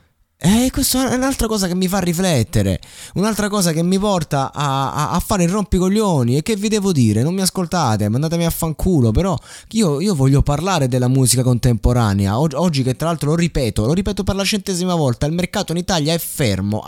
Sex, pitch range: male, 110-170 Hz